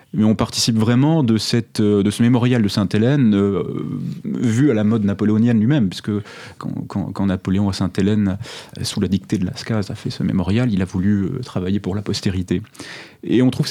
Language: French